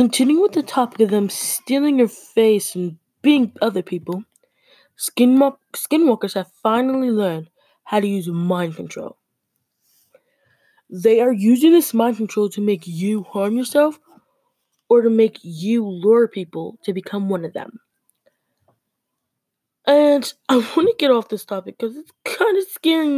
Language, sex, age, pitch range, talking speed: English, female, 10-29, 200-295 Hz, 150 wpm